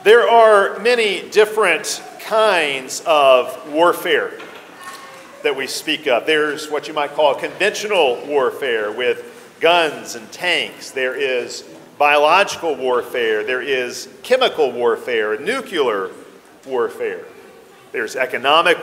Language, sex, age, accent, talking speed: English, male, 40-59, American, 110 wpm